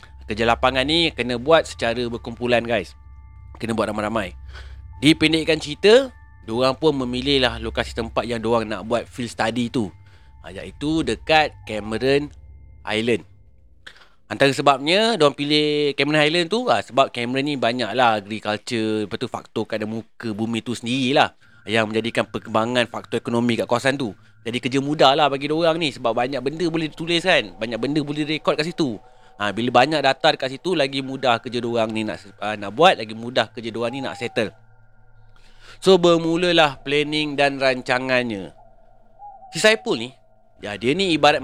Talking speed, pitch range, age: 165 wpm, 110-145 Hz, 30-49